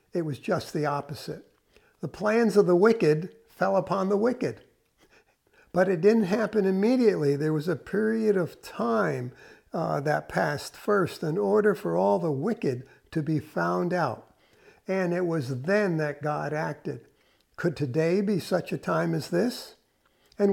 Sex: male